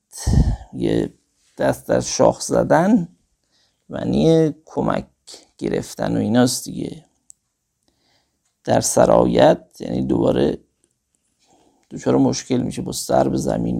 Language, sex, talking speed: Persian, male, 95 wpm